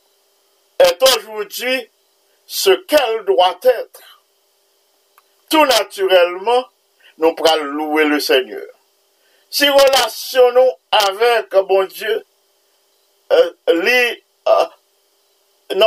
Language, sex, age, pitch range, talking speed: English, male, 50-69, 175-275 Hz, 85 wpm